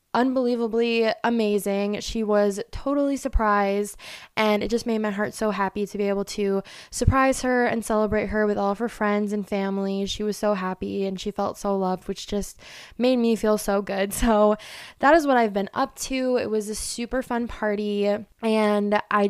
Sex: female